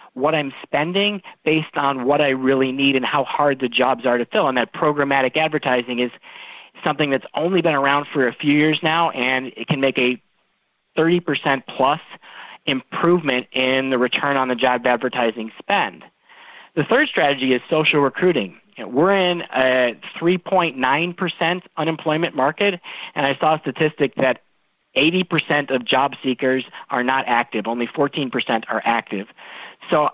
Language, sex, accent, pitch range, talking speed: English, male, American, 125-155 Hz, 155 wpm